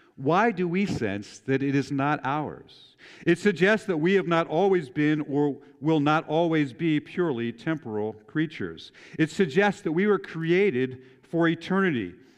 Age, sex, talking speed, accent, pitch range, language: 50-69, male, 160 wpm, American, 125-175 Hz, English